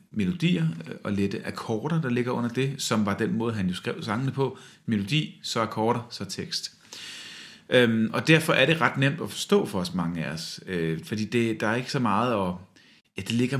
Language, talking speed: Danish, 210 wpm